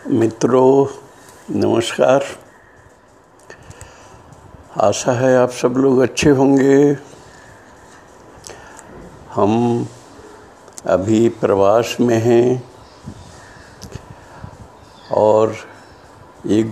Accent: native